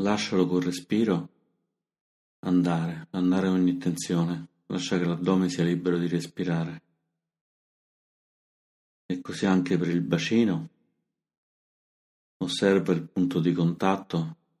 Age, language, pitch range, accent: 40-59, Italian, 85-95 Hz, native